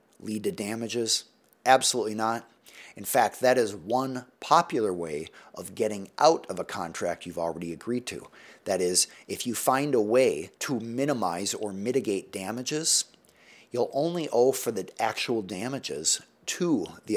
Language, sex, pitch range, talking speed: English, male, 105-140 Hz, 150 wpm